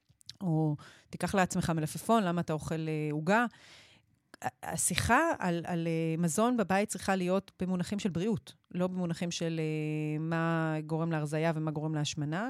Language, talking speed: Hebrew, 145 wpm